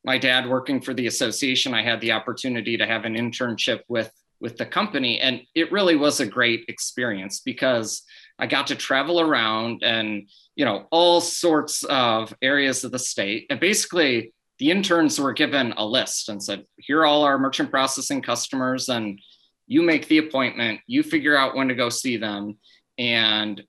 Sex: male